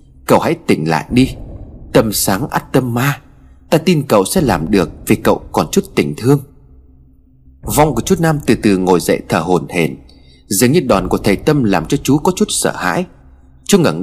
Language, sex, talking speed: Vietnamese, male, 205 wpm